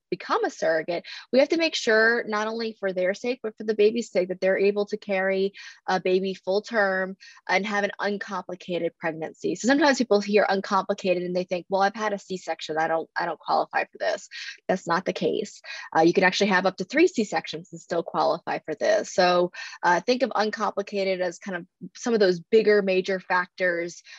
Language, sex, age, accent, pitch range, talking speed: English, female, 20-39, American, 175-215 Hz, 210 wpm